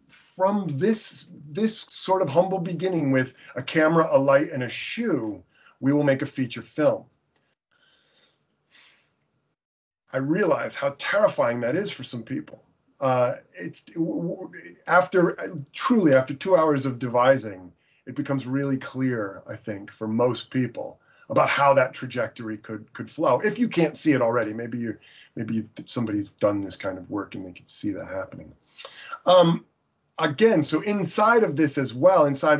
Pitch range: 135-175 Hz